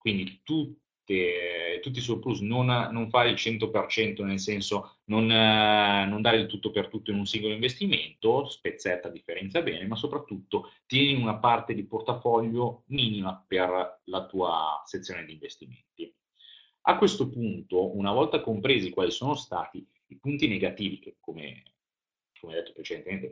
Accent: native